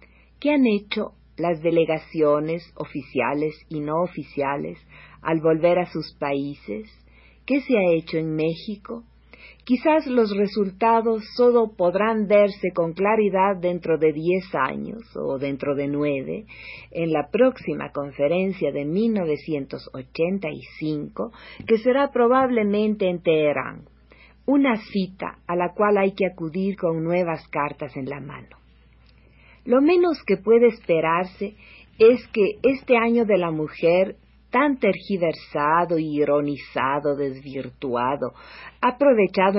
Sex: female